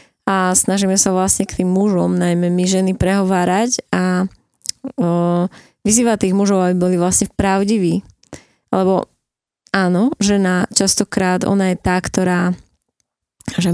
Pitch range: 180-200 Hz